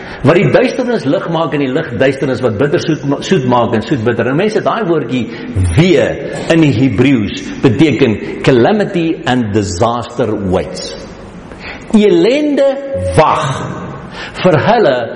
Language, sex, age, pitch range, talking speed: English, male, 60-79, 135-200 Hz, 140 wpm